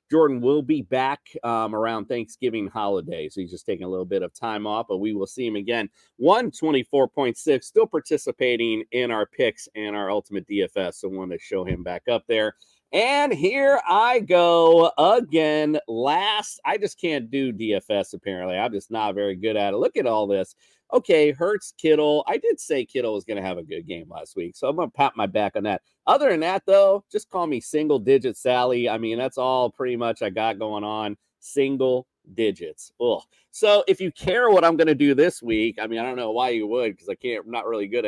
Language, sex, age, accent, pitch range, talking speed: English, male, 40-59, American, 115-170 Hz, 215 wpm